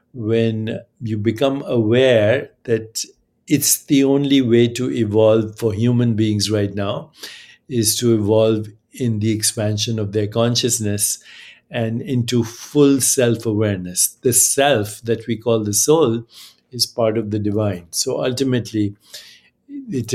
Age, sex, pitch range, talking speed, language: 60-79, male, 110-130 Hz, 130 wpm, English